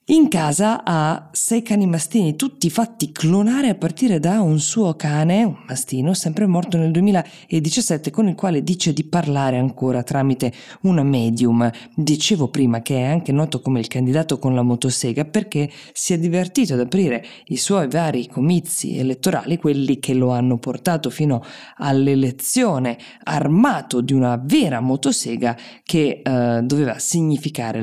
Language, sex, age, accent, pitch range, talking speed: Italian, female, 20-39, native, 130-175 Hz, 150 wpm